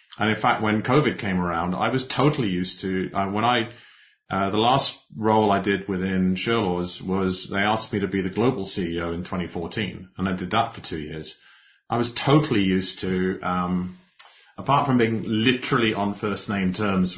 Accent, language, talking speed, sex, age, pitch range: British, English, 195 wpm, male, 30-49, 95-110 Hz